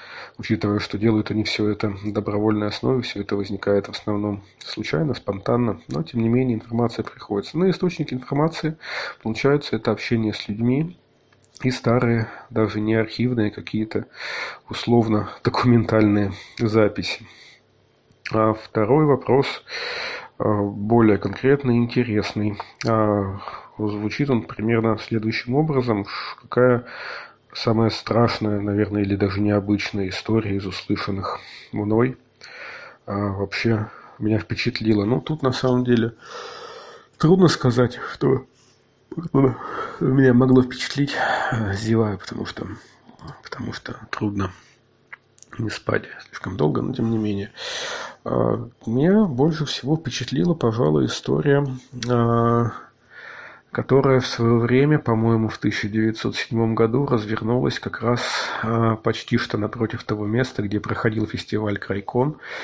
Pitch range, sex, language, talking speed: 105-125 Hz, male, Russian, 110 wpm